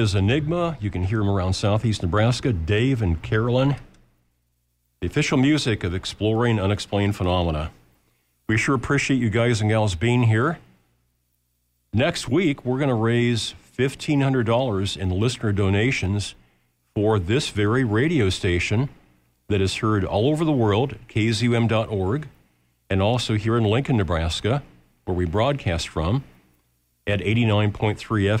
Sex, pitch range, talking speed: male, 85-115 Hz, 135 wpm